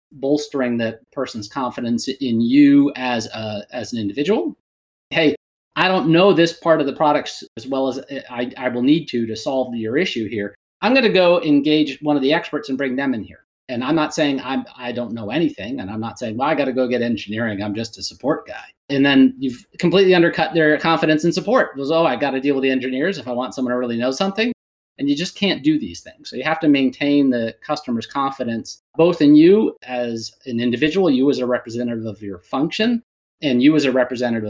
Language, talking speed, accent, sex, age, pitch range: English, 235 wpm, American, male, 30-49, 120-155 Hz